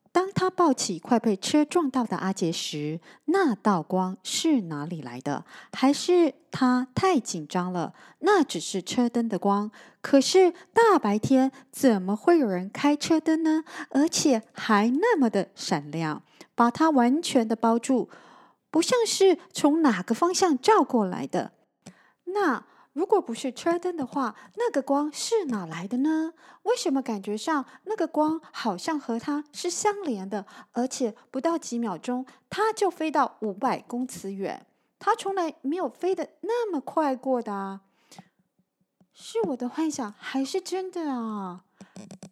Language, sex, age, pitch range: Chinese, female, 30-49, 205-320 Hz